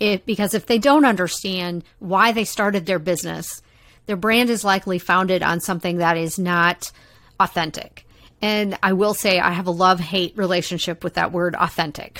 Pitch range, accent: 180-215 Hz, American